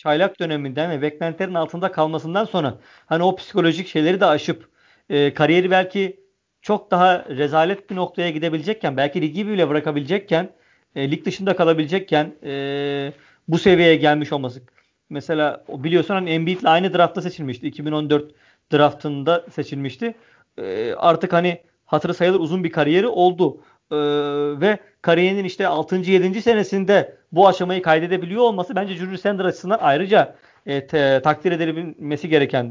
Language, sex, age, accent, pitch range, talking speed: Turkish, male, 40-59, native, 155-190 Hz, 140 wpm